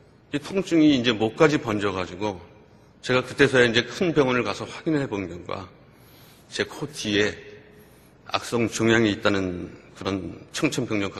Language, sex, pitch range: Korean, male, 100-125 Hz